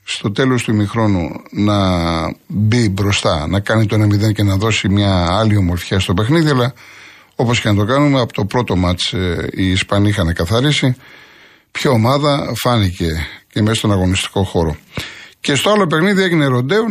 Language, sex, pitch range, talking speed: Greek, male, 105-135 Hz, 165 wpm